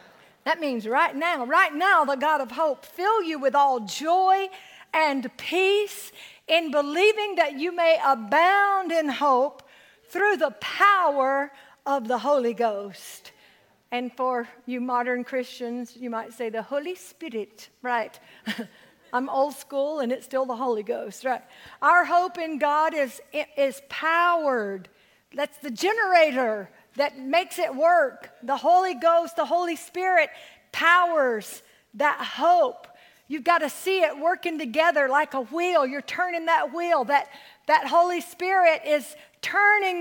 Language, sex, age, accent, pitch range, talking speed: English, female, 50-69, American, 275-350 Hz, 145 wpm